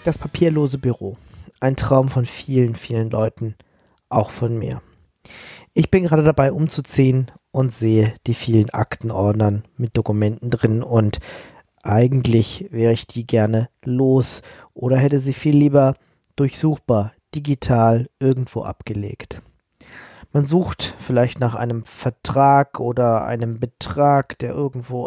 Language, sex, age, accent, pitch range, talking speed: German, male, 40-59, German, 115-140 Hz, 125 wpm